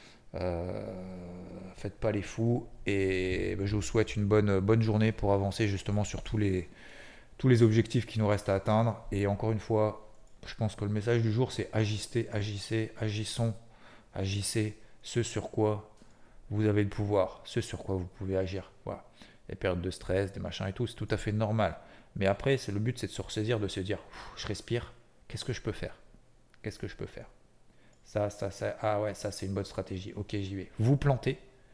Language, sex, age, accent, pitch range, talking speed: French, male, 40-59, French, 100-115 Hz, 210 wpm